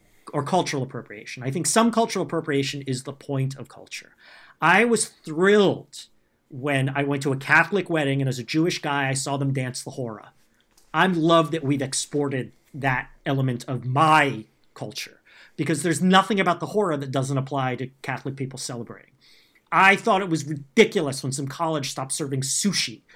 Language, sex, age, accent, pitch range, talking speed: English, male, 40-59, American, 135-180 Hz, 180 wpm